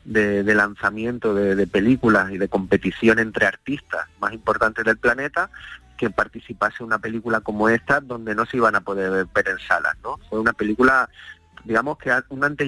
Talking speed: 180 wpm